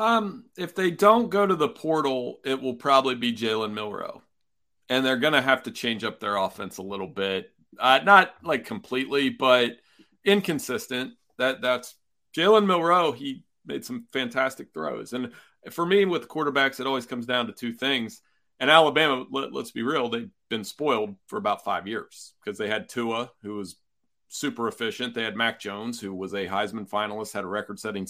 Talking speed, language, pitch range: 190 wpm, English, 110-145 Hz